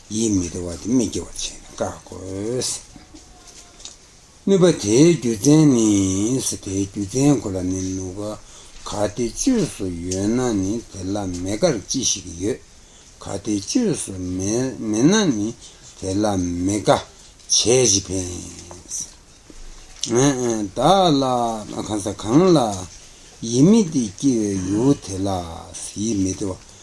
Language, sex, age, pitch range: Italian, male, 60-79, 95-120 Hz